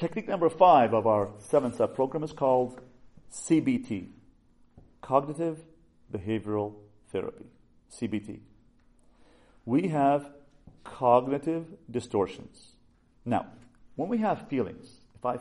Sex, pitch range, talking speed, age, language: male, 110-145 Hz, 95 wpm, 40-59, English